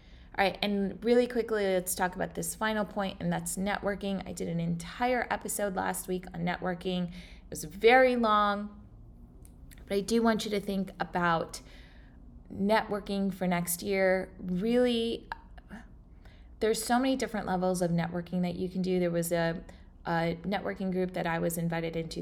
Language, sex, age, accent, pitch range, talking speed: English, female, 20-39, American, 175-215 Hz, 165 wpm